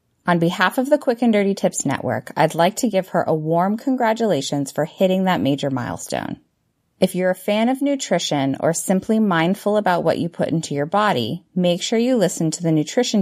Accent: American